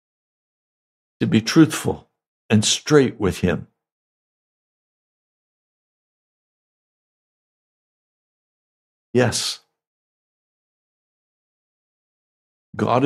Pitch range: 105-140 Hz